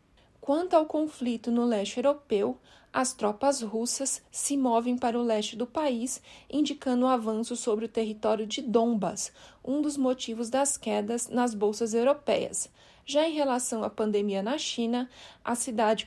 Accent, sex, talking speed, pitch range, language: Brazilian, female, 155 wpm, 220-265 Hz, Portuguese